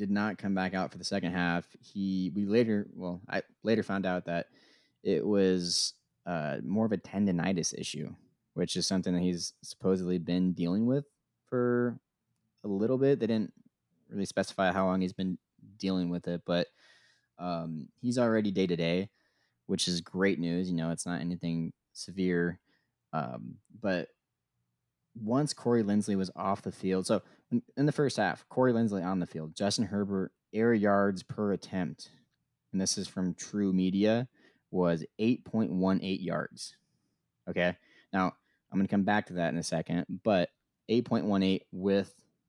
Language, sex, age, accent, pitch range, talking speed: English, male, 20-39, American, 90-105 Hz, 165 wpm